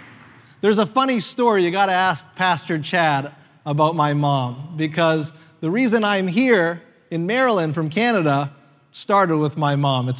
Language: English